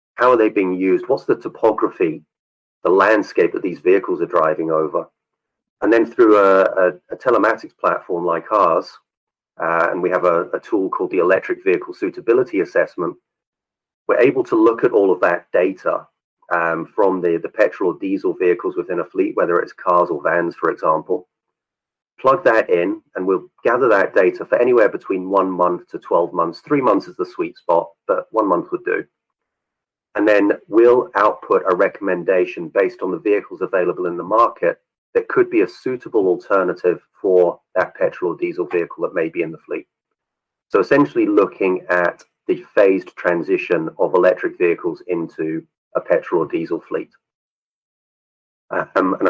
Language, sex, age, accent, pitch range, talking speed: English, male, 30-49, British, 355-435 Hz, 175 wpm